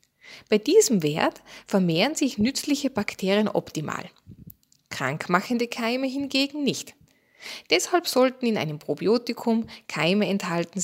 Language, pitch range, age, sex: German, 180-265 Hz, 20-39, female